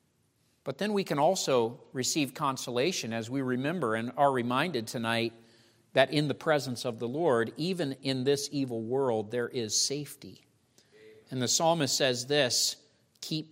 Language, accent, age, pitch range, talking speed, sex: English, American, 50-69, 120-155 Hz, 155 wpm, male